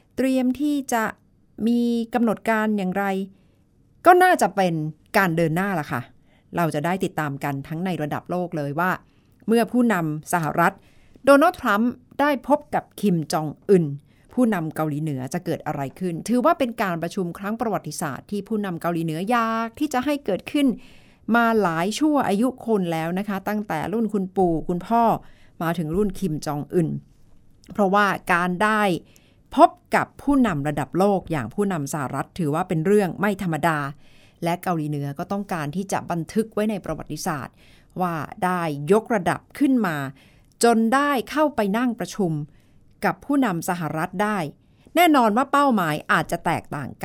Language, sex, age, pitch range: Thai, female, 60-79, 165-225 Hz